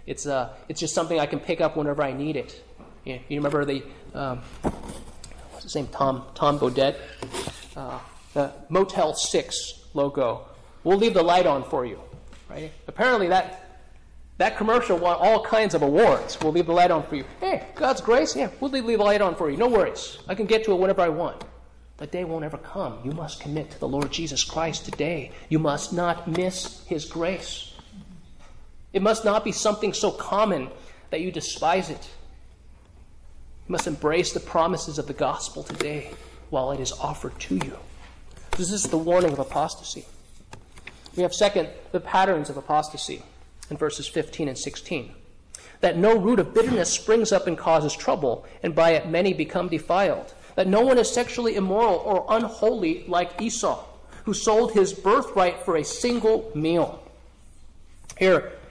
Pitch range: 145-205 Hz